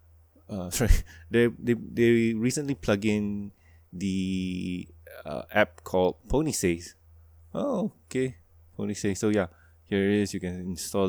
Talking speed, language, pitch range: 130 wpm, English, 85-110 Hz